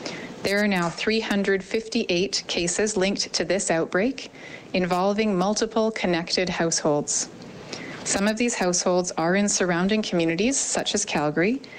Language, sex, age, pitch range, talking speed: English, female, 30-49, 170-210 Hz, 120 wpm